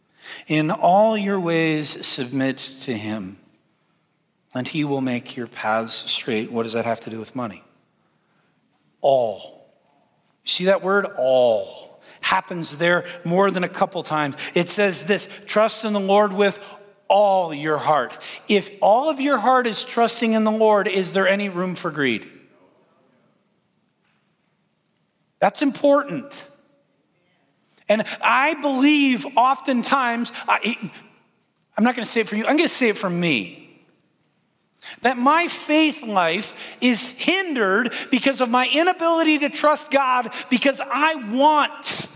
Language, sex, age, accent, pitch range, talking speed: English, male, 40-59, American, 170-250 Hz, 140 wpm